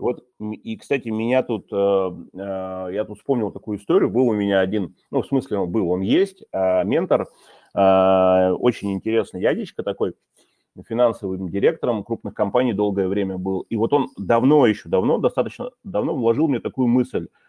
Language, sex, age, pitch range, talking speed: Russian, male, 30-49, 100-130 Hz, 150 wpm